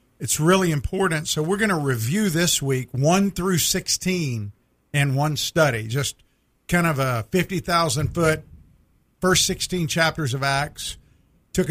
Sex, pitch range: male, 130-165 Hz